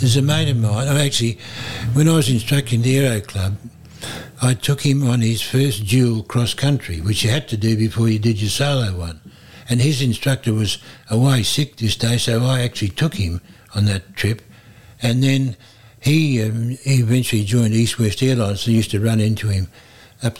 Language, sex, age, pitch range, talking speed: English, male, 60-79, 110-125 Hz, 195 wpm